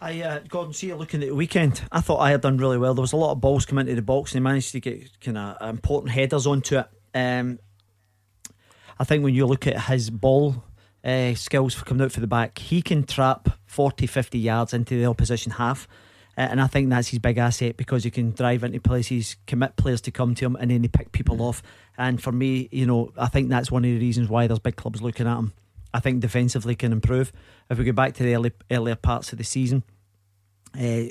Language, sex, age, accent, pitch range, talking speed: English, male, 40-59, British, 115-135 Hz, 240 wpm